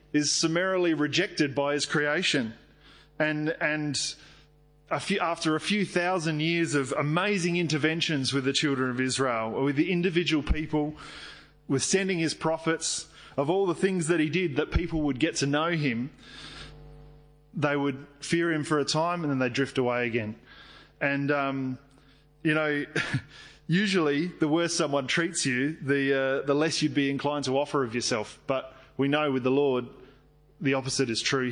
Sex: male